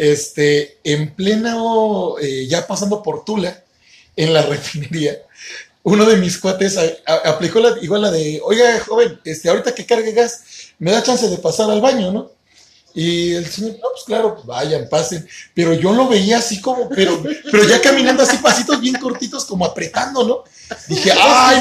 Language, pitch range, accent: Spanish, 170-245 Hz, Mexican